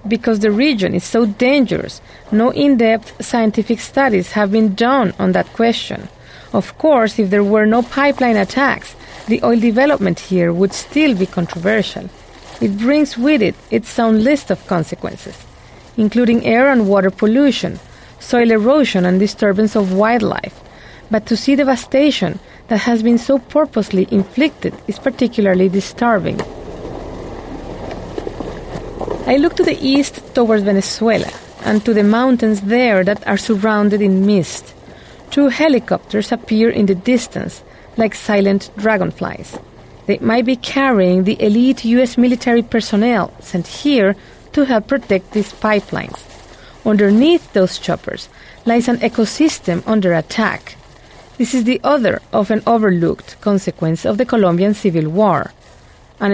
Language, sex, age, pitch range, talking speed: English, female, 30-49, 200-245 Hz, 135 wpm